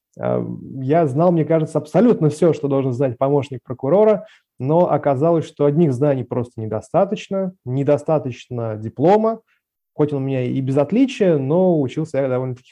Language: Russian